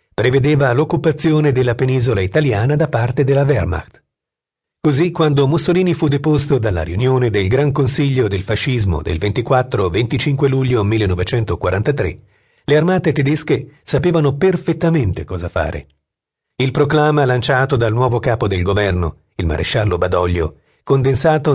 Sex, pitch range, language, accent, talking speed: male, 100-145 Hz, Italian, native, 125 wpm